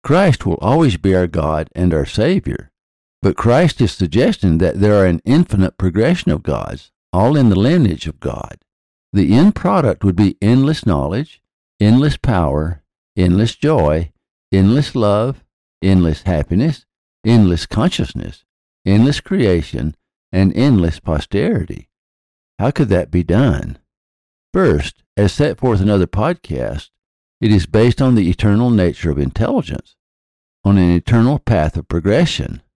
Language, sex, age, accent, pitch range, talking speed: English, male, 60-79, American, 80-115 Hz, 140 wpm